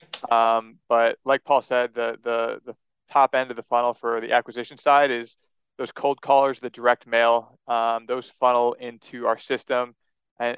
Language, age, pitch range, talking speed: English, 20-39, 115-125 Hz, 175 wpm